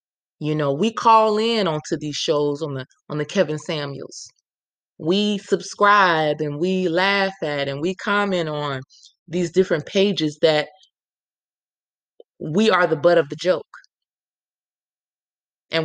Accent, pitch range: American, 155-195 Hz